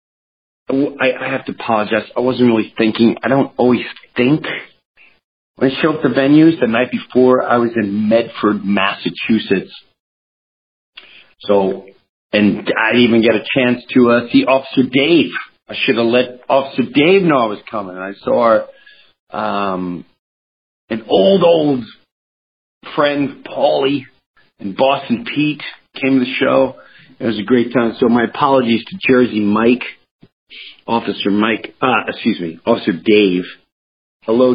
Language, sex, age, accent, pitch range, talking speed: English, male, 50-69, American, 100-135 Hz, 145 wpm